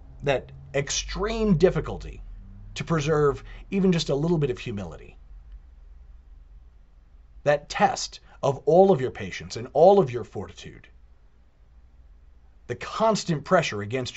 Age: 40-59